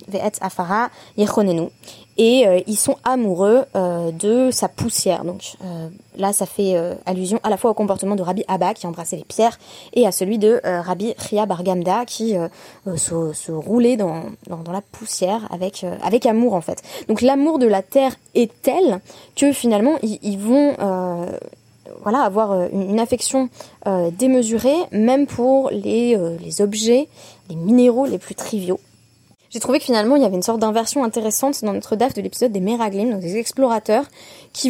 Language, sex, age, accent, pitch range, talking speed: French, female, 20-39, French, 195-250 Hz, 175 wpm